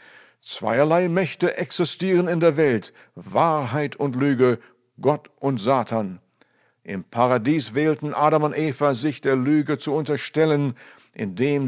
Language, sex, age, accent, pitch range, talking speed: German, male, 60-79, German, 120-155 Hz, 125 wpm